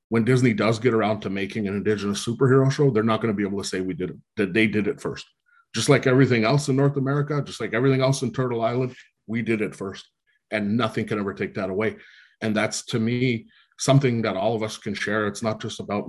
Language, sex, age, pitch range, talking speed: English, male, 30-49, 105-125 Hz, 250 wpm